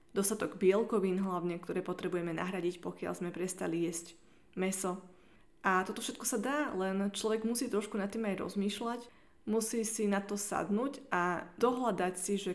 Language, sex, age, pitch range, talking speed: Slovak, female, 20-39, 180-210 Hz, 160 wpm